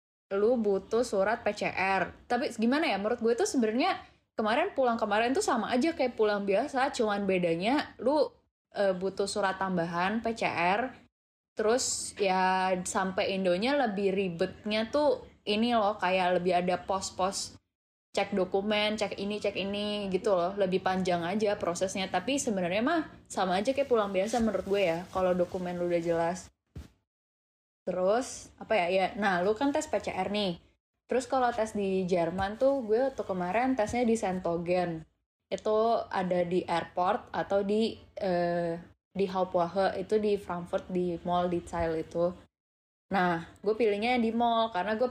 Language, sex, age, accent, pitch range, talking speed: Indonesian, female, 10-29, native, 180-225 Hz, 150 wpm